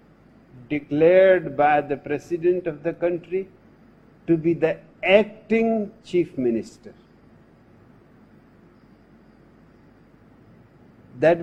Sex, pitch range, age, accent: male, 145-185 Hz, 60-79, Indian